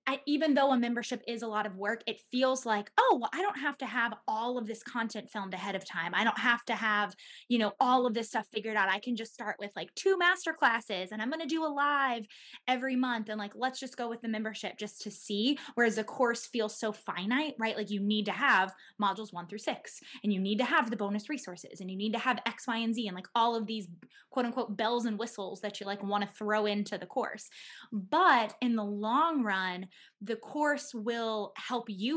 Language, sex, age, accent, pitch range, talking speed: English, female, 20-39, American, 200-240 Hz, 245 wpm